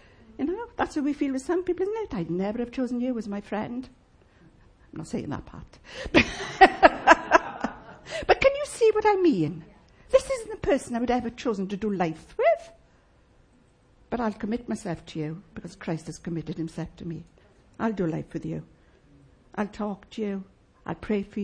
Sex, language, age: female, English, 60-79